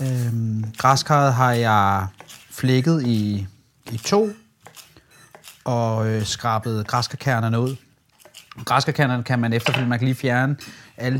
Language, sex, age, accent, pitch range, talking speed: Danish, male, 30-49, native, 120-145 Hz, 120 wpm